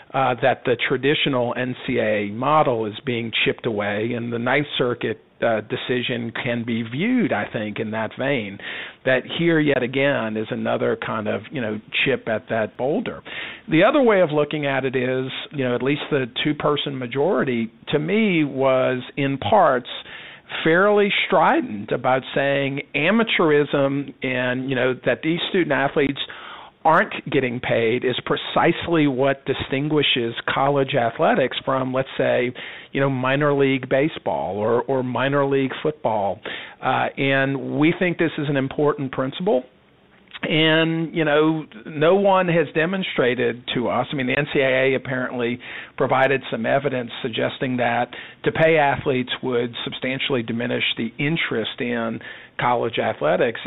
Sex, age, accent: male, 50-69, American